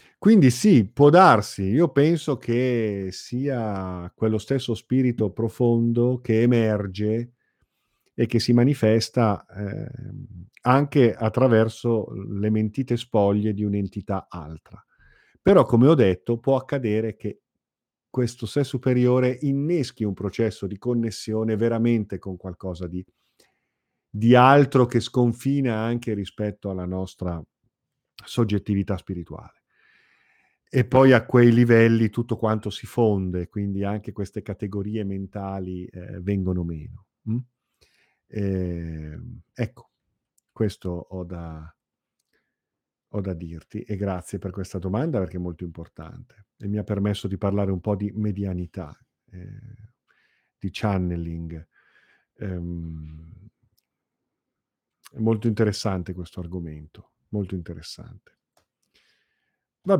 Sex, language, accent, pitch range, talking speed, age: male, Italian, native, 95-120 Hz, 110 wpm, 40-59